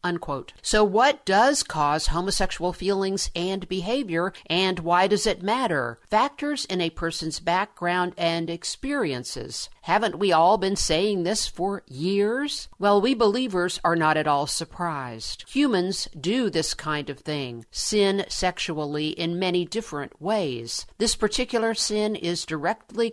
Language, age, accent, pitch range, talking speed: English, 50-69, American, 165-215 Hz, 140 wpm